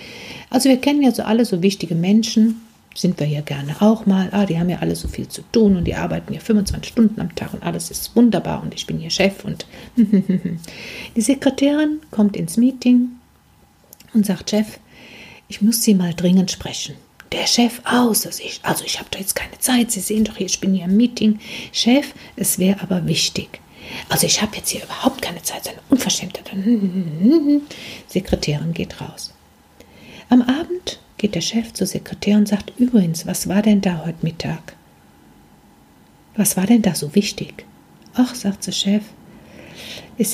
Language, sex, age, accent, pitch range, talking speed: German, female, 60-79, German, 185-230 Hz, 180 wpm